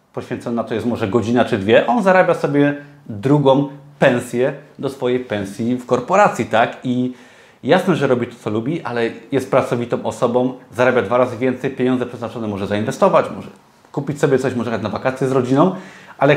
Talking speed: 170 wpm